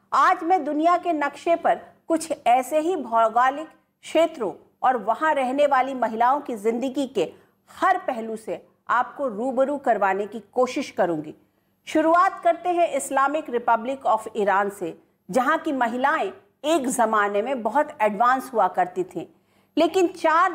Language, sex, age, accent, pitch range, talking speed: Hindi, female, 50-69, native, 225-315 Hz, 145 wpm